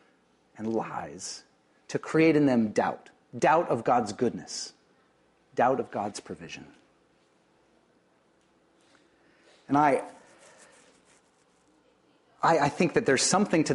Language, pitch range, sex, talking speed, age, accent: English, 110-145 Hz, male, 105 wpm, 40-59, American